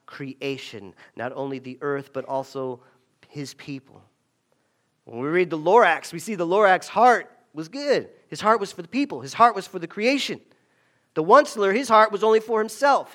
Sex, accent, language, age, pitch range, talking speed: male, American, English, 40-59, 130-180 Hz, 185 wpm